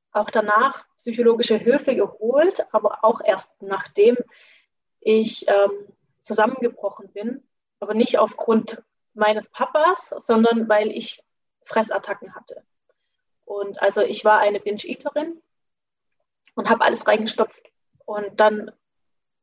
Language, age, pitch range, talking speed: German, 20-39, 215-245 Hz, 110 wpm